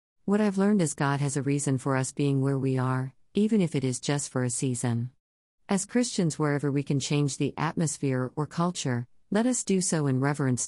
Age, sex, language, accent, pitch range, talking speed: 50-69, female, English, American, 125-165 Hz, 215 wpm